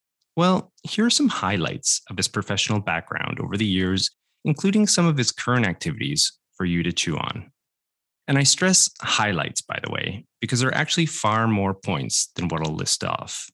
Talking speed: 185 wpm